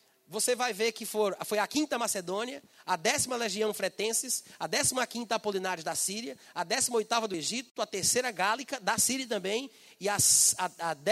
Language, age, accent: Portuguese, 30-49, Brazilian